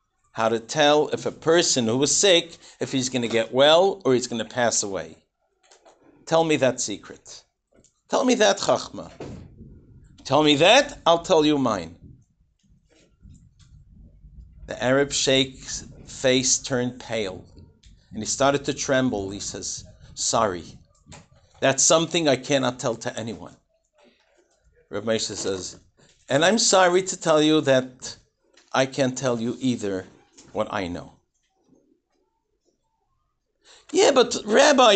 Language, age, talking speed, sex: English, 50-69, 130 wpm, male